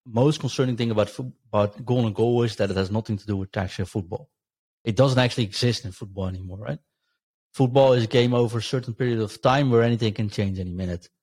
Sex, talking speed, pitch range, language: male, 225 wpm, 100-120 Hz, English